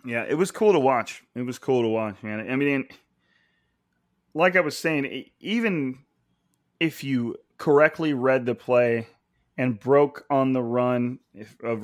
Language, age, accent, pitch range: English, 30-49, American, 115-145 Hz